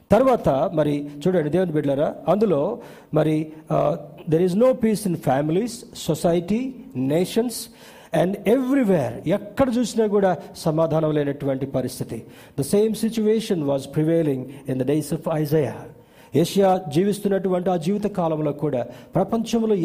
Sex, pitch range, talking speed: male, 145-200 Hz, 120 wpm